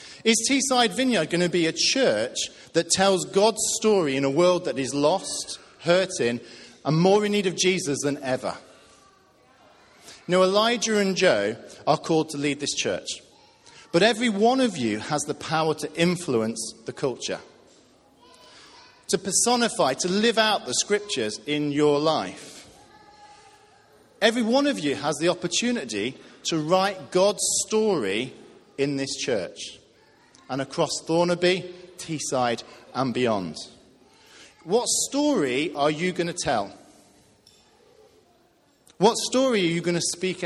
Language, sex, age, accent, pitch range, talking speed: English, male, 40-59, British, 145-220 Hz, 140 wpm